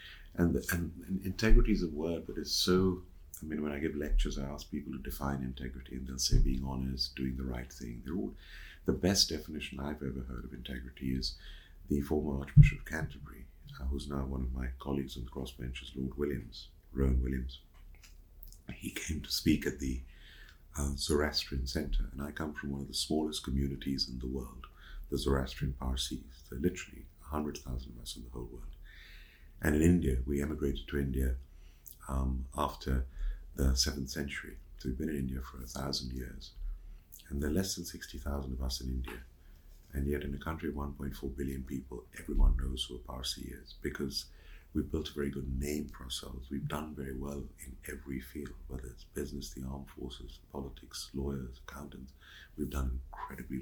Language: English